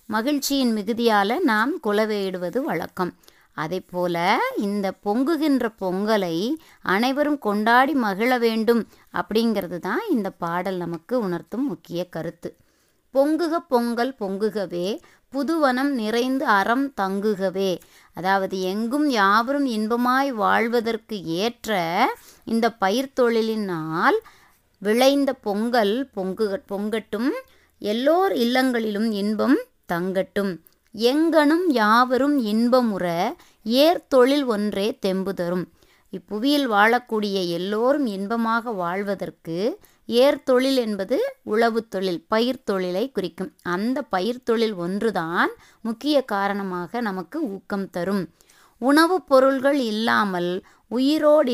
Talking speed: 90 wpm